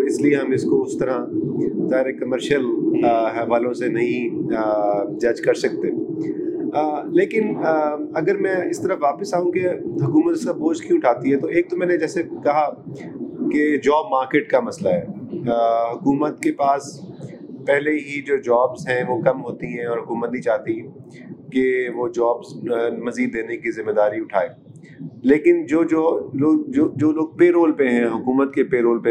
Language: Urdu